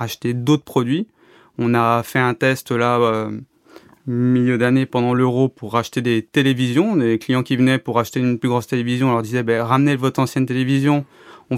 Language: French